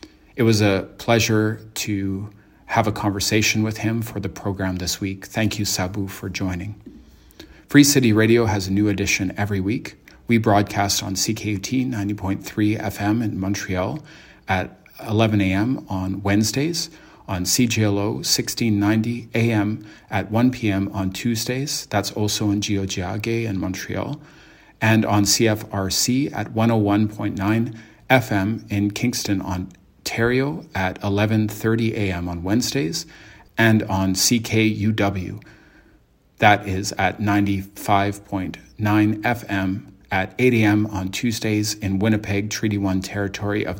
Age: 40-59